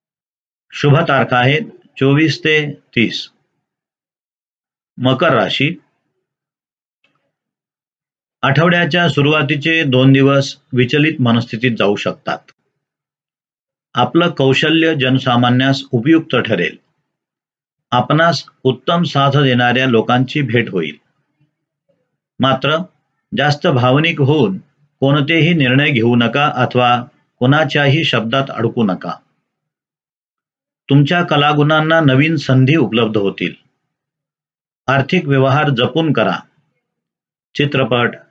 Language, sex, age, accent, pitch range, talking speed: Marathi, male, 50-69, native, 125-155 Hz, 80 wpm